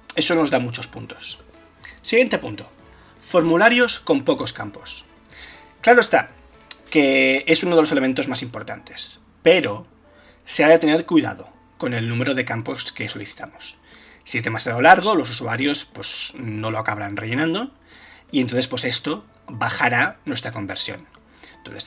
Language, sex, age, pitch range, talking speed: Spanish, male, 20-39, 120-175 Hz, 140 wpm